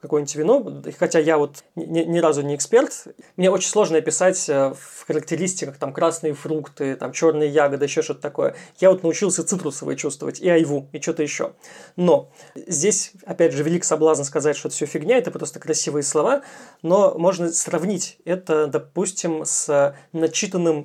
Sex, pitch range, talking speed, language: male, 155-175 Hz, 160 wpm, Russian